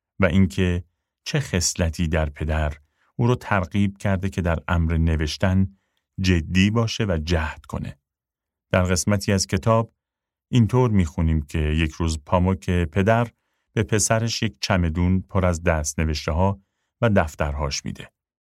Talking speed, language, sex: 135 wpm, Persian, male